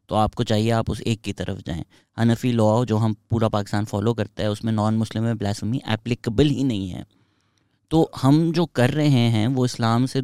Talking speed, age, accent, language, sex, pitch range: 210 wpm, 20-39, Indian, English, male, 110-130 Hz